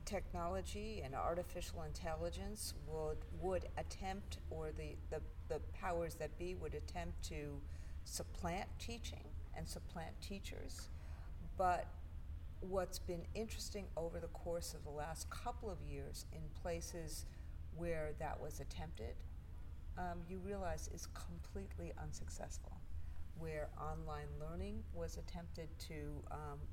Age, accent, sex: 50-69, American, female